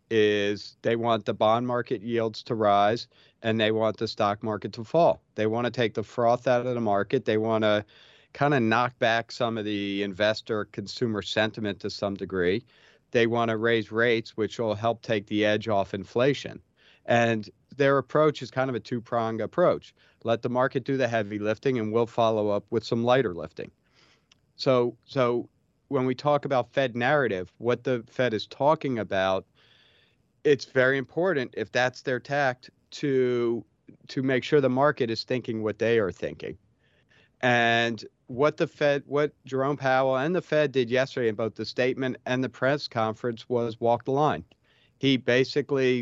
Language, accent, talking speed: English, American, 180 wpm